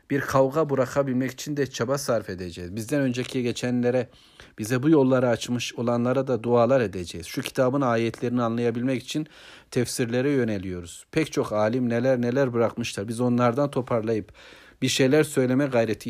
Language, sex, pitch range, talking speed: Turkish, male, 110-135 Hz, 145 wpm